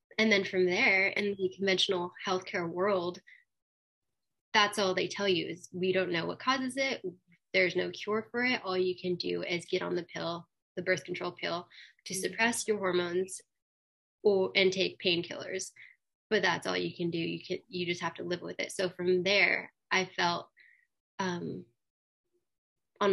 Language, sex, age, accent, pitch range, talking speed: English, female, 20-39, American, 180-205 Hz, 180 wpm